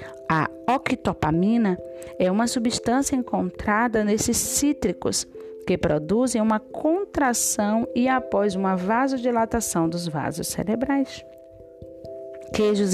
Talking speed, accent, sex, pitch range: 95 wpm, Brazilian, female, 160-225 Hz